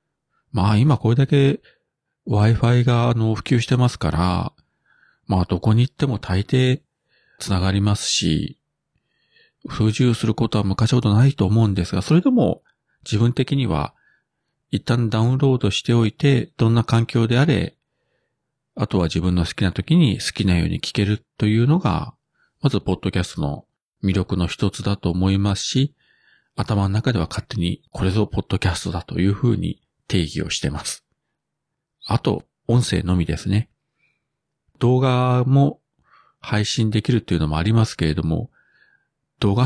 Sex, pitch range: male, 95-125 Hz